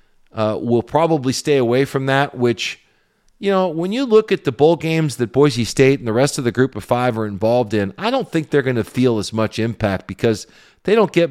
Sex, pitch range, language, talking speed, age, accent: male, 115-135 Hz, English, 240 wpm, 40-59, American